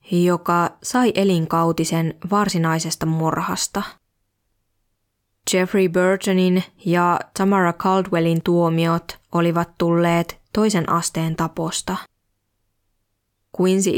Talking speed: 75 wpm